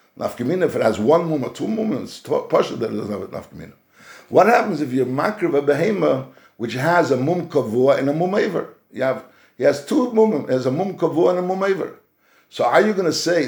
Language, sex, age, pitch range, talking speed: English, male, 60-79, 130-180 Hz, 225 wpm